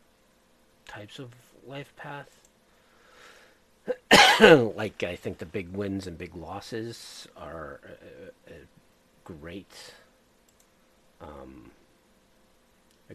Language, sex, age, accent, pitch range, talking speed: English, male, 50-69, American, 75-95 Hz, 85 wpm